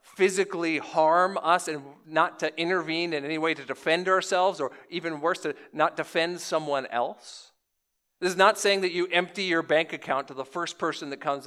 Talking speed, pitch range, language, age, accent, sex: 195 wpm, 145-190 Hz, English, 40-59, American, male